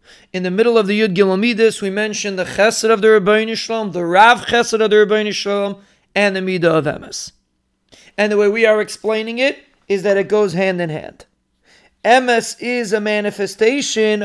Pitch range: 185-220 Hz